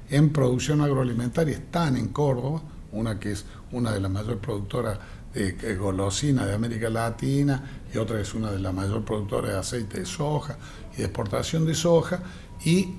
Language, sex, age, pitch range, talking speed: English, male, 60-79, 110-145 Hz, 170 wpm